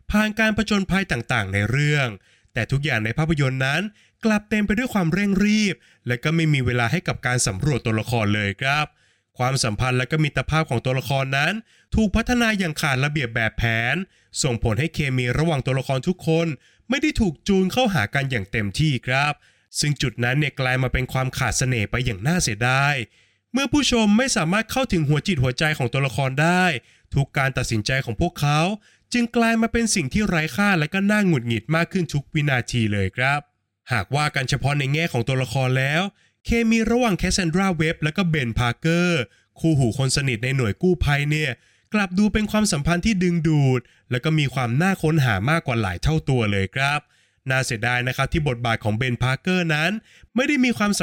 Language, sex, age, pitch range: Thai, male, 20-39, 125-180 Hz